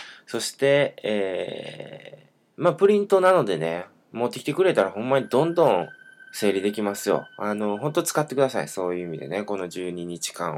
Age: 20-39